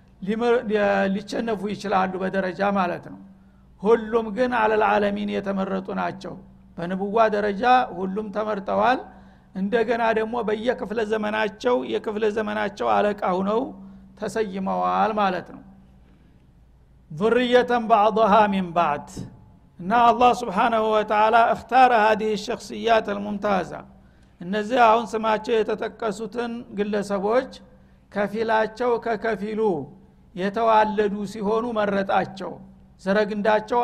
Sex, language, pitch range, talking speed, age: male, Amharic, 195-225 Hz, 85 wpm, 60-79